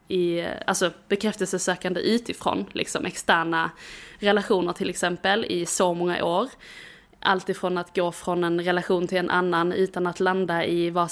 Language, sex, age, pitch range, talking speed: Swedish, female, 20-39, 175-200 Hz, 150 wpm